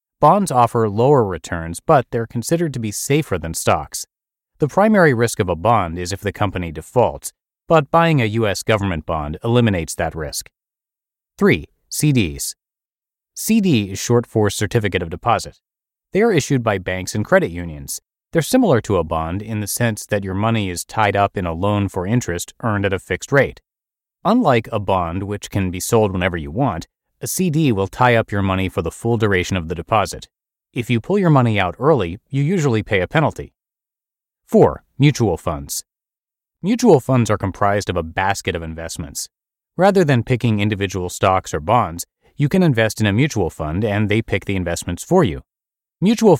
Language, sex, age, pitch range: English, male, 30-49, 95-125 Hz